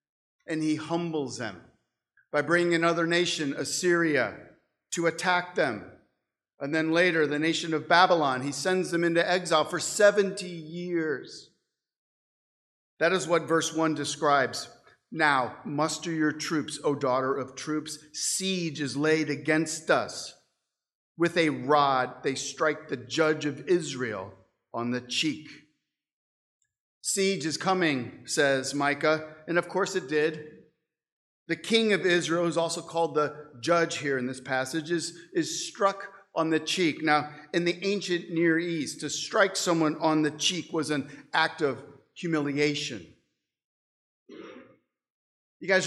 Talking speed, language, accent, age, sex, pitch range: 140 wpm, English, American, 50-69, male, 150-175 Hz